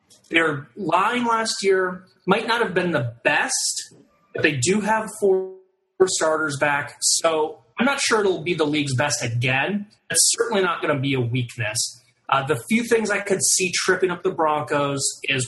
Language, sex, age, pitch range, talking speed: English, male, 30-49, 130-185 Hz, 180 wpm